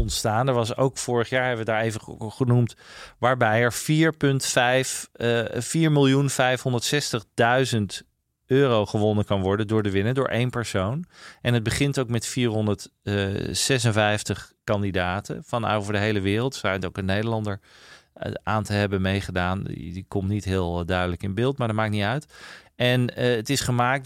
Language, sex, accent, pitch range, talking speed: Dutch, male, Dutch, 105-130 Hz, 165 wpm